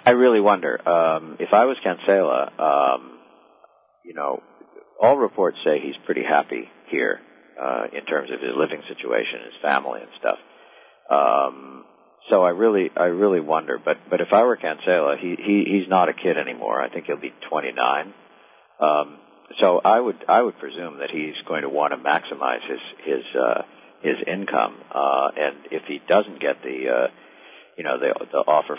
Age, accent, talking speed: 50-69, American, 180 wpm